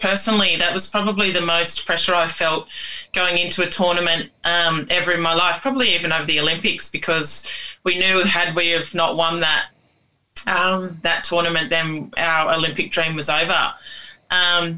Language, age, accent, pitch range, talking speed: English, 20-39, Australian, 160-180 Hz, 170 wpm